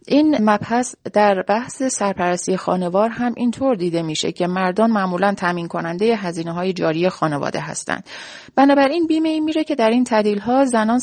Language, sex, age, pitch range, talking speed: Persian, female, 30-49, 180-250 Hz, 165 wpm